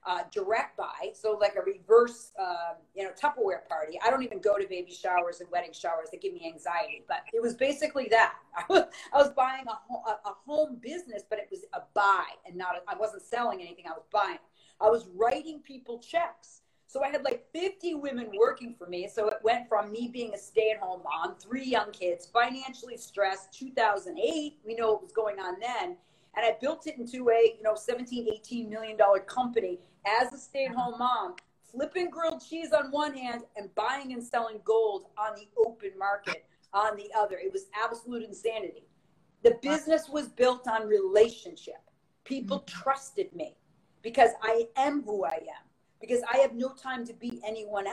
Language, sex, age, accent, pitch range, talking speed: English, female, 40-59, American, 200-280 Hz, 195 wpm